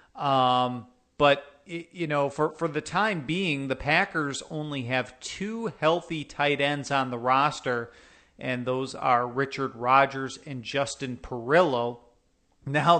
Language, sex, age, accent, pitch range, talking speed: English, male, 40-59, American, 130-165 Hz, 135 wpm